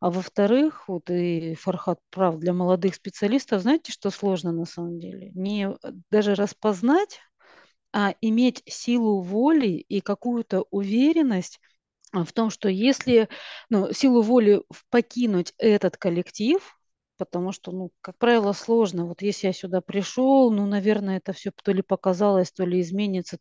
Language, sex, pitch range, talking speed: Russian, female, 185-225 Hz, 145 wpm